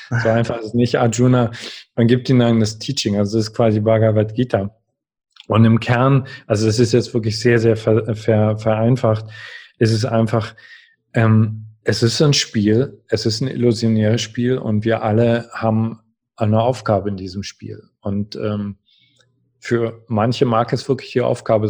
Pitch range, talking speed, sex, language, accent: 110-120 Hz, 170 wpm, male, German, German